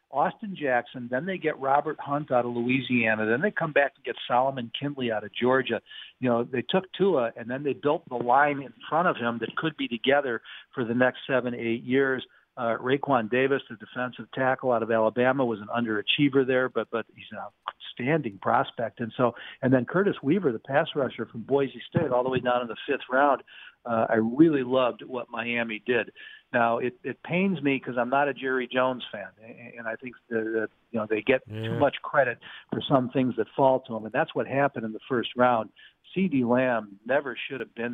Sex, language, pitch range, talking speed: male, English, 115-135 Hz, 215 wpm